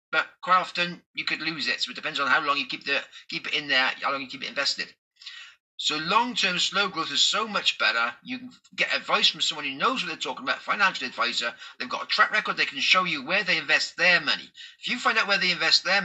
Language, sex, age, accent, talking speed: English, male, 30-49, British, 260 wpm